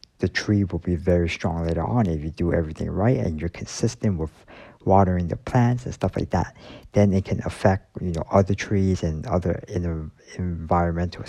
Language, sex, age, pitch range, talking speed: English, male, 50-69, 85-110 Hz, 195 wpm